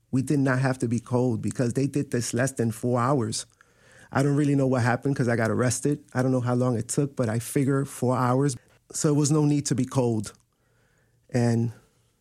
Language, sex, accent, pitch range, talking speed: English, male, American, 120-140 Hz, 225 wpm